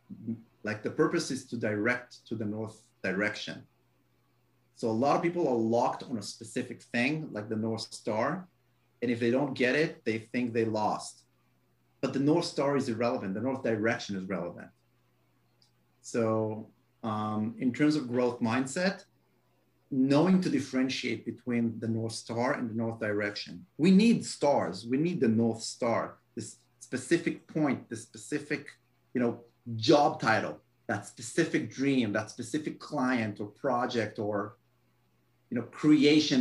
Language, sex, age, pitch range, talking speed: English, male, 30-49, 110-145 Hz, 155 wpm